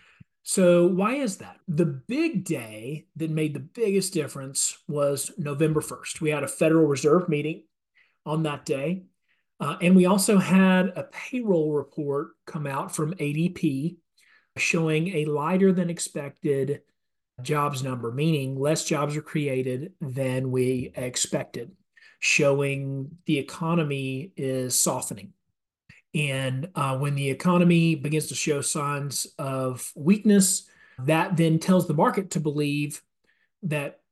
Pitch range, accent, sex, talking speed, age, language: 145-175 Hz, American, male, 130 wpm, 40-59, English